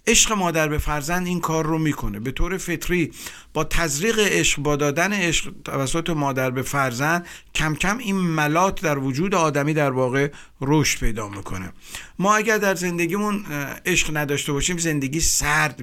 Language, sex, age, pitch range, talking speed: Persian, male, 50-69, 135-170 Hz, 160 wpm